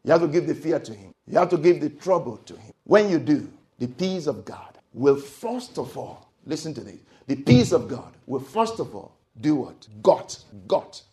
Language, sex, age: English, male, 50-69